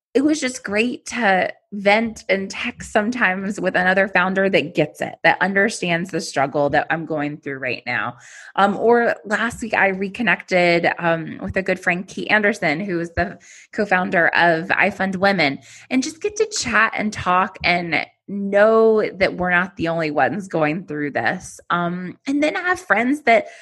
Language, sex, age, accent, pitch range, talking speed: English, female, 20-39, American, 160-215 Hz, 180 wpm